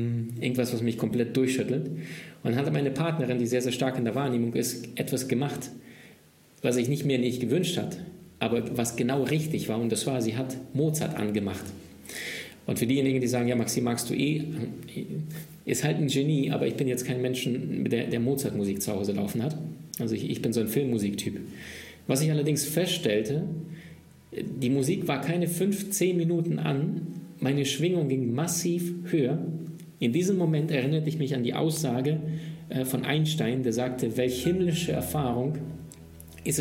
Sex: male